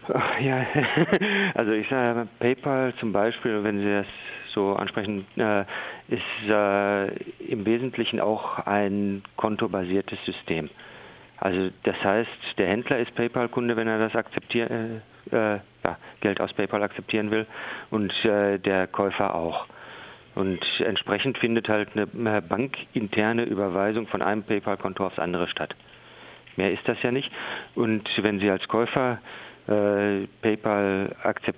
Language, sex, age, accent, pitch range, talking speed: German, male, 40-59, German, 100-115 Hz, 125 wpm